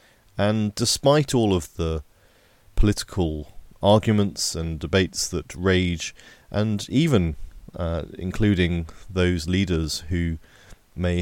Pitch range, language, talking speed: 80-95 Hz, English, 100 wpm